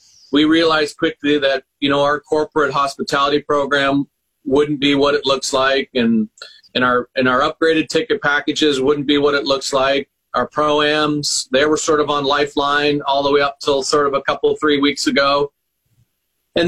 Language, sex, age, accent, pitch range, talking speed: English, male, 40-59, American, 145-175 Hz, 185 wpm